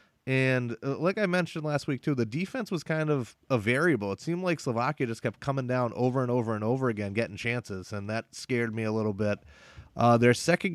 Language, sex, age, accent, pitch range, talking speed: English, male, 30-49, American, 110-150 Hz, 225 wpm